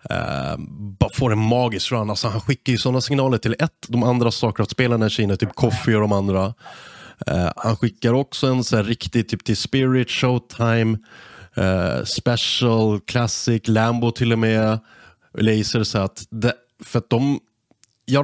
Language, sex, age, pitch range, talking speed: English, male, 30-49, 105-125 Hz, 160 wpm